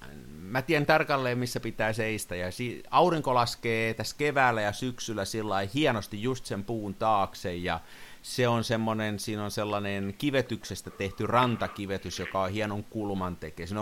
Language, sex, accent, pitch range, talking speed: Finnish, male, native, 100-130 Hz, 155 wpm